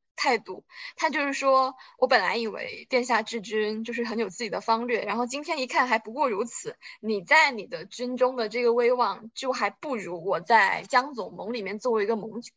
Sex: female